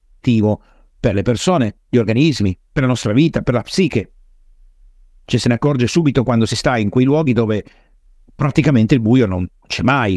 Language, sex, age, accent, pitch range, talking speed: Italian, male, 50-69, native, 100-140 Hz, 175 wpm